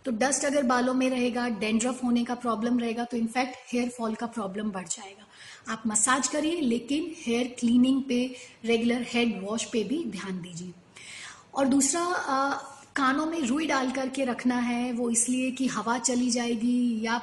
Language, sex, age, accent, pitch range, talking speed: Hindi, female, 30-49, native, 230-260 Hz, 175 wpm